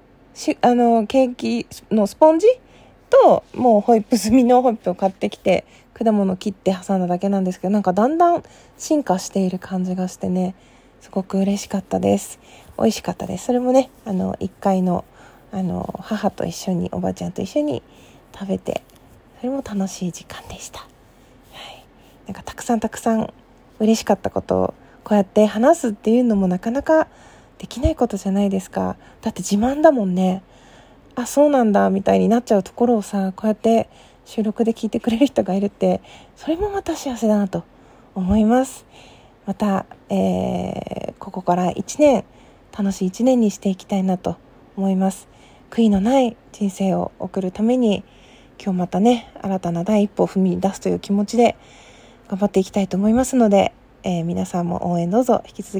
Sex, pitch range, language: female, 185-240 Hz, Japanese